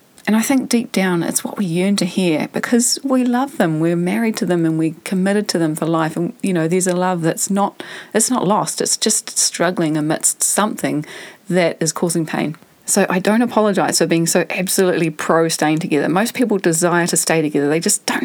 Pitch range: 165-220 Hz